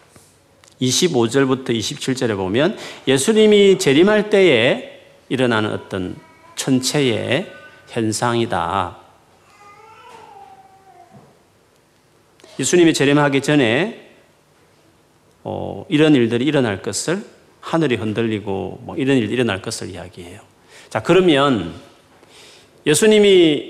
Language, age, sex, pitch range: Korean, 40-59, male, 120-190 Hz